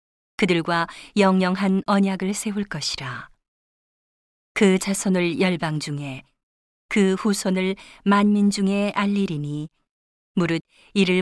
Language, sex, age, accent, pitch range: Korean, female, 40-59, native, 170-200 Hz